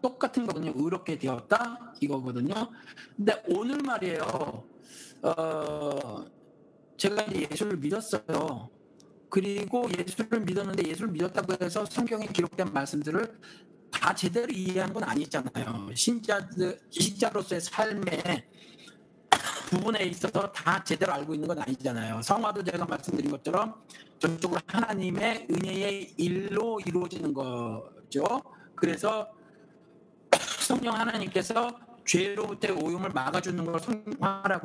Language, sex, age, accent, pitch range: Korean, male, 60-79, native, 175-230 Hz